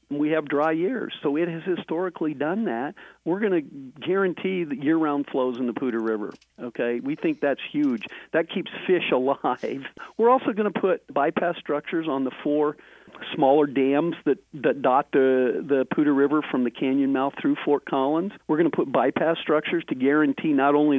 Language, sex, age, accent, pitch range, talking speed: English, male, 50-69, American, 145-180 Hz, 190 wpm